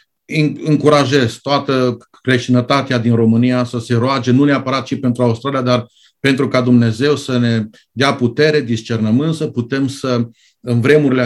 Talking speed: 140 wpm